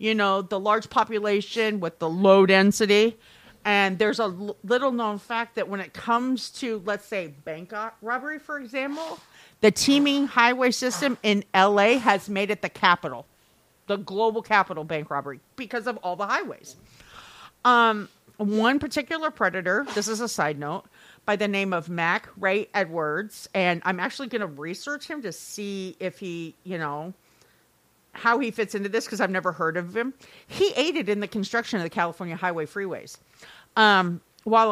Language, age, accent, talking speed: English, 50-69, American, 170 wpm